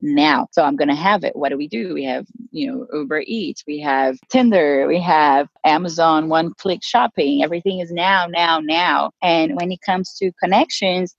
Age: 30-49